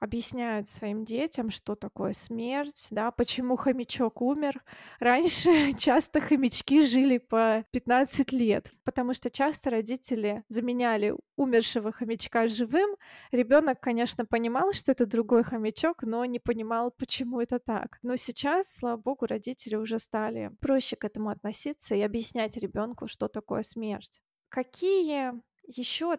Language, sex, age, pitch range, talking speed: Russian, female, 20-39, 225-260 Hz, 130 wpm